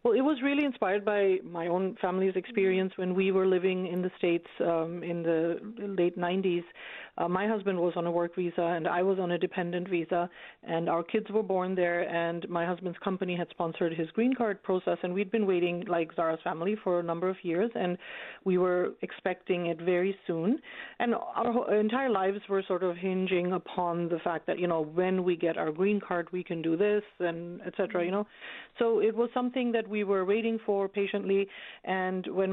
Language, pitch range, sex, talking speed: English, 175-200 Hz, female, 205 wpm